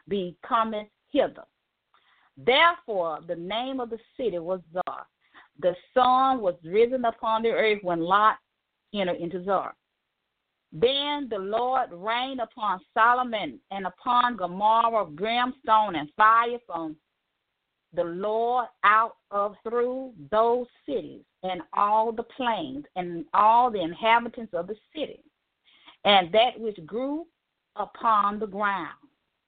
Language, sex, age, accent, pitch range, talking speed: English, female, 40-59, American, 175-240 Hz, 125 wpm